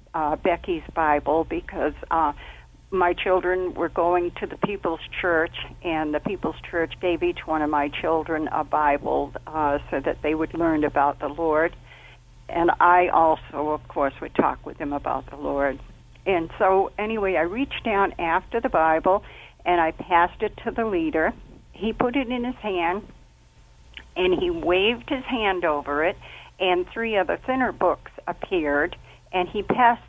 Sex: female